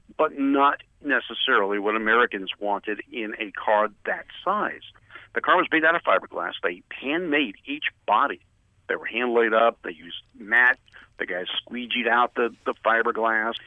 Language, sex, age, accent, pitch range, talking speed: English, male, 50-69, American, 115-190 Hz, 160 wpm